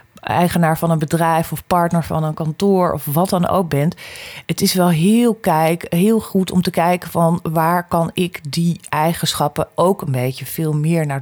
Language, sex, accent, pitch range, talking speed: Dutch, female, Dutch, 135-165 Hz, 195 wpm